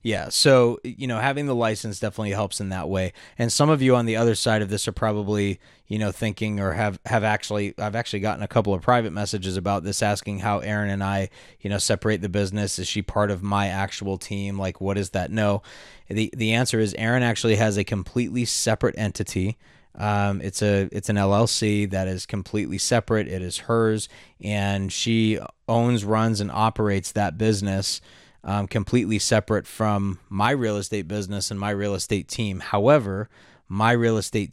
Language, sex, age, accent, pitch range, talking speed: English, male, 20-39, American, 100-115 Hz, 195 wpm